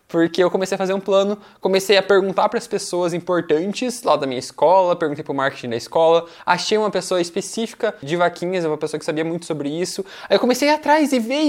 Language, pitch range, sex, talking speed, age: Portuguese, 170-230 Hz, male, 235 wpm, 20-39